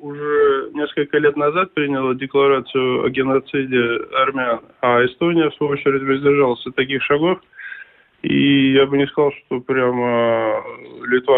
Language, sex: Russian, male